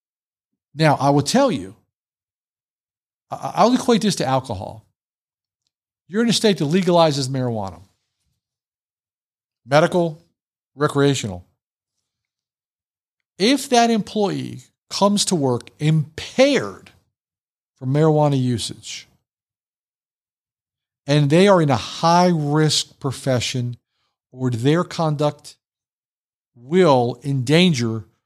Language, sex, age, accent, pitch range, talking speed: English, male, 50-69, American, 115-165 Hz, 90 wpm